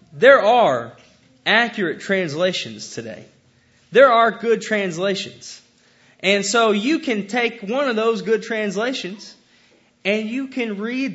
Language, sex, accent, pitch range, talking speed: English, male, American, 150-230 Hz, 125 wpm